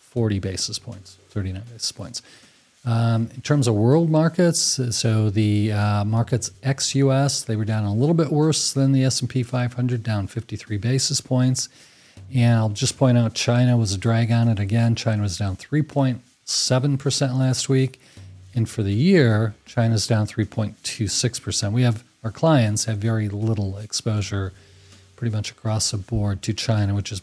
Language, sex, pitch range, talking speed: English, male, 110-135 Hz, 165 wpm